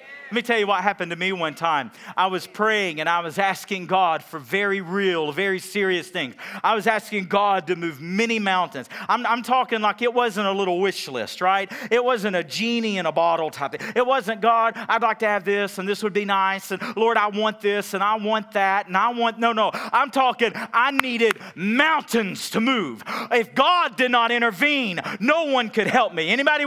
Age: 40-59